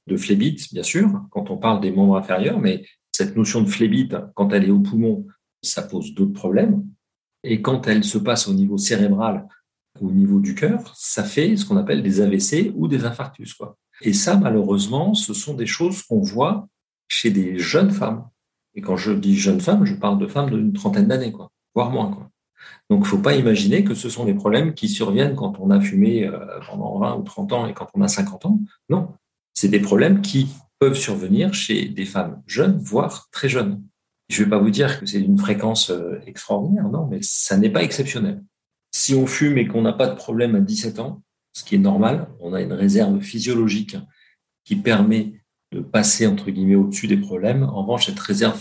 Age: 50-69